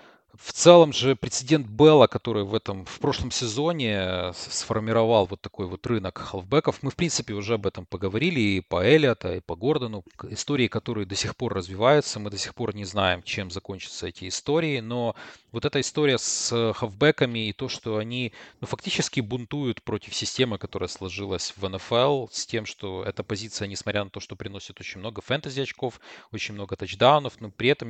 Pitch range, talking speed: 100-120 Hz, 180 wpm